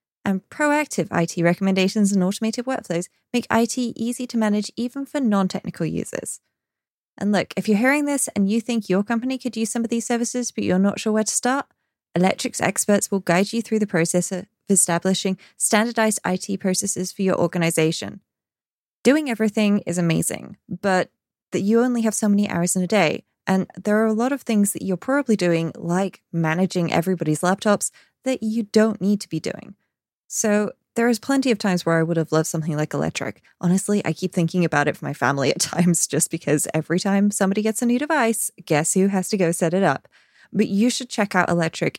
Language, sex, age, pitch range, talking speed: English, female, 20-39, 175-220 Hz, 200 wpm